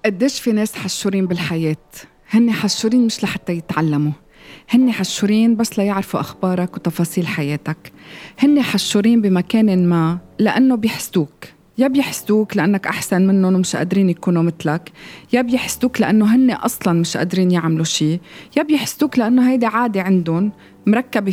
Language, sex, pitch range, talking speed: Arabic, female, 170-225 Hz, 135 wpm